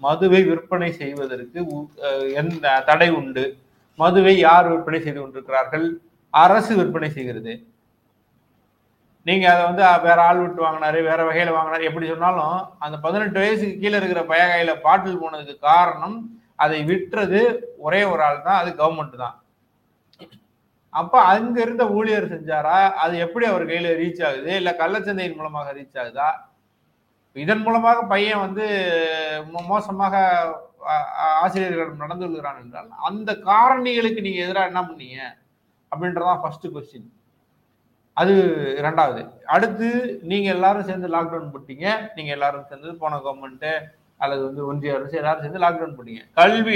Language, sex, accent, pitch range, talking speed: Tamil, male, native, 155-195 Hz, 105 wpm